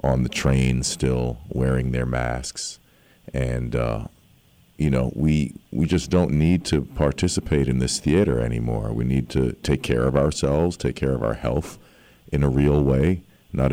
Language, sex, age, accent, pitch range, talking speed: English, male, 50-69, American, 65-75 Hz, 170 wpm